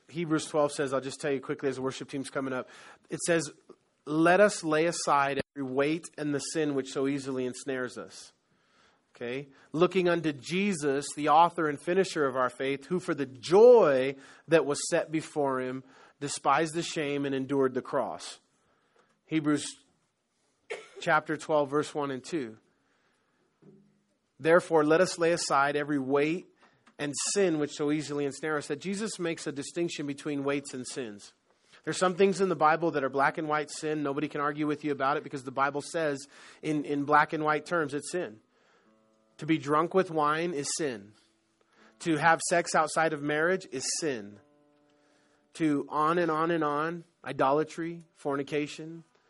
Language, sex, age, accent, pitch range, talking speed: English, male, 30-49, American, 140-170 Hz, 170 wpm